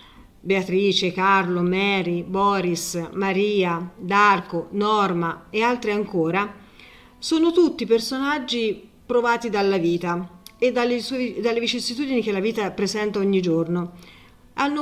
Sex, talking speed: female, 105 wpm